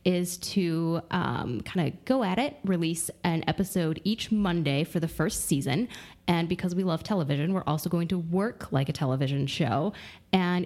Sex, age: female, 10-29